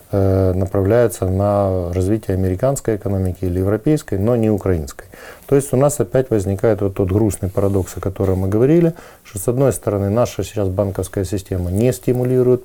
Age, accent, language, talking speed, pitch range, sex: 20-39, native, Ukrainian, 160 wpm, 95-115 Hz, male